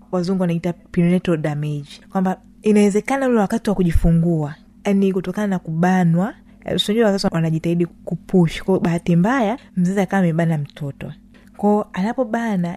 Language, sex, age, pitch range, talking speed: Swahili, female, 20-39, 170-215 Hz, 130 wpm